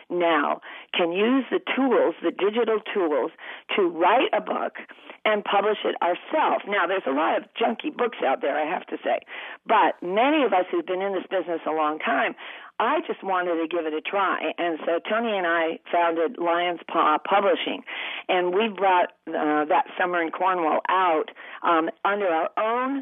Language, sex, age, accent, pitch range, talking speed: English, female, 50-69, American, 165-225 Hz, 185 wpm